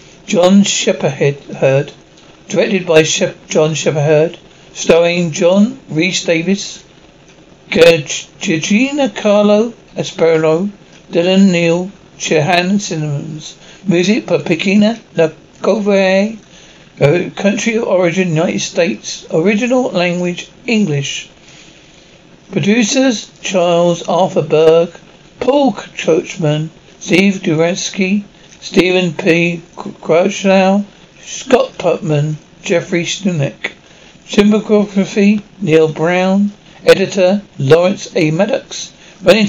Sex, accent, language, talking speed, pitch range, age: male, British, English, 80 wpm, 170-200 Hz, 60-79